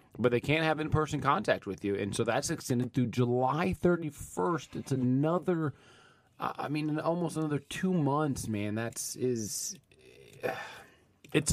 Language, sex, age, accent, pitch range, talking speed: English, male, 30-49, American, 110-140 Hz, 145 wpm